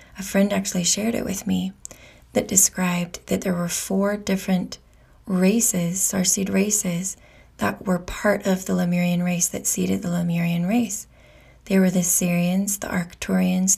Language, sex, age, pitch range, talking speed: English, female, 20-39, 180-195 Hz, 155 wpm